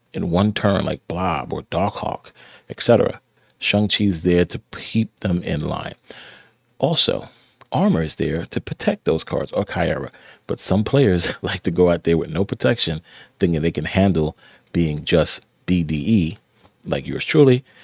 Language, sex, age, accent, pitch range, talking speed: English, male, 40-59, American, 85-115 Hz, 160 wpm